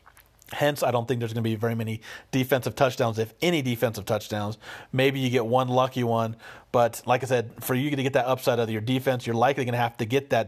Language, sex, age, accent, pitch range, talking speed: English, male, 40-59, American, 115-130 Hz, 250 wpm